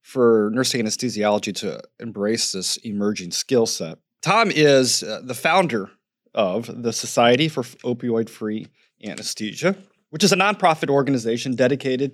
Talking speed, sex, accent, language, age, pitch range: 135 wpm, male, American, English, 30-49, 115-140 Hz